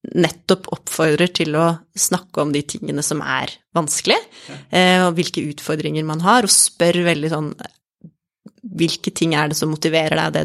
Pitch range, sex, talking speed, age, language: 160-200 Hz, female, 160 wpm, 30-49, English